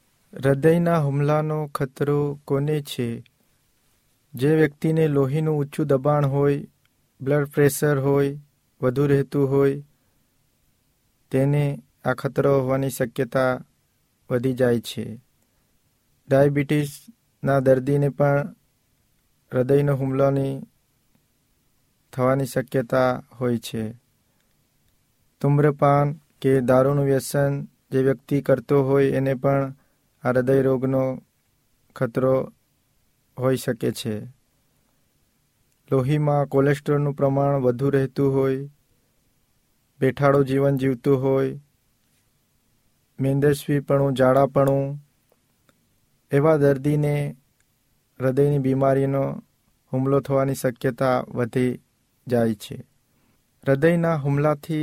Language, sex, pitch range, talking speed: Hindi, male, 130-145 Hz, 60 wpm